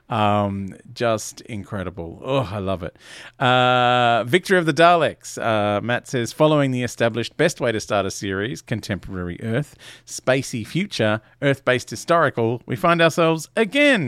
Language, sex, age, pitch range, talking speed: English, male, 40-59, 105-140 Hz, 150 wpm